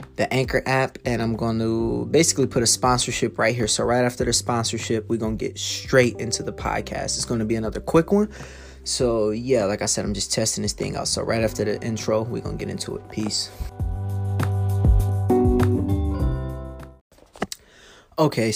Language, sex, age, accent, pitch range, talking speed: English, male, 20-39, American, 110-130 Hz, 185 wpm